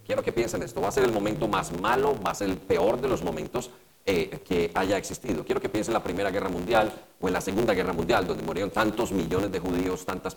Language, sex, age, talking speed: English, male, 40-59, 255 wpm